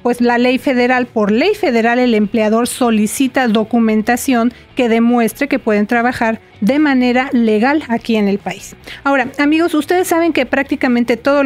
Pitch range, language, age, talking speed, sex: 230-280 Hz, Spanish, 40-59, 155 wpm, female